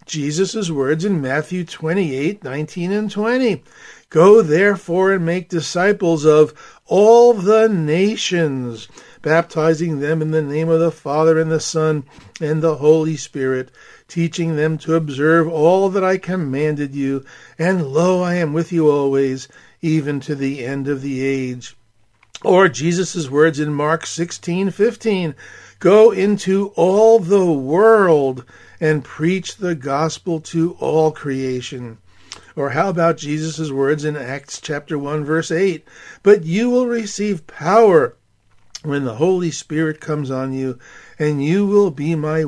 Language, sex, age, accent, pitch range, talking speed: English, male, 50-69, American, 145-190 Hz, 145 wpm